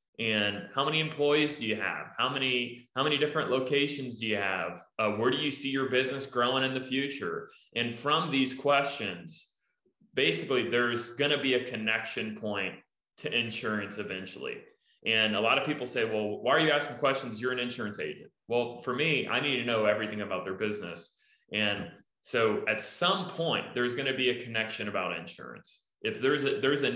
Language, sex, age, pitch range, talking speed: English, male, 20-39, 110-135 Hz, 190 wpm